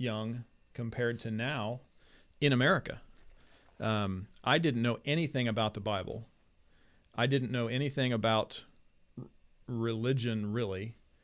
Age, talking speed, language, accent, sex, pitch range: 40-59, 110 wpm, English, American, male, 105-125 Hz